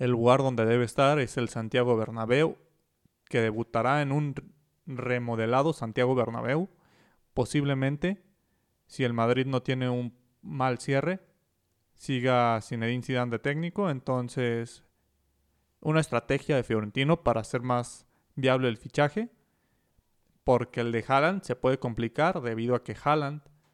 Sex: male